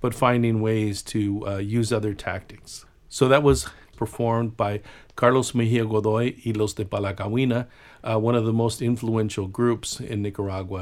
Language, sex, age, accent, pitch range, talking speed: English, male, 50-69, American, 105-125 Hz, 155 wpm